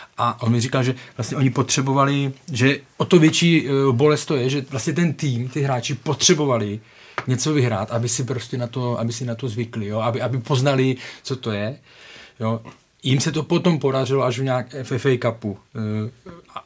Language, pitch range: Czech, 110-135 Hz